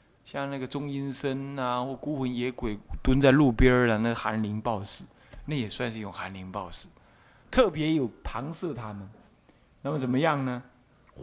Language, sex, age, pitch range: Chinese, male, 20-39, 120-160 Hz